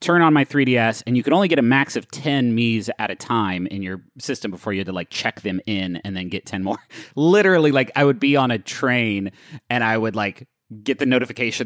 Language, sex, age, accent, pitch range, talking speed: English, male, 30-49, American, 100-130 Hz, 245 wpm